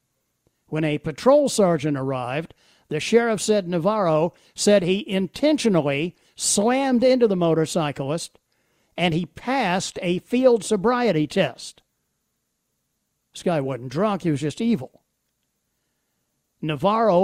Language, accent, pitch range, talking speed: English, American, 155-220 Hz, 110 wpm